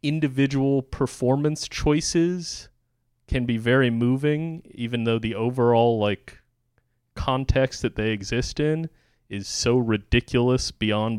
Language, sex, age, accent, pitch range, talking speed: English, male, 30-49, American, 100-125 Hz, 115 wpm